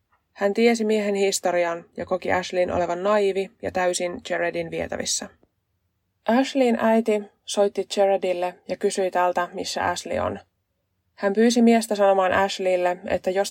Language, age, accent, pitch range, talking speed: Finnish, 20-39, native, 180-210 Hz, 135 wpm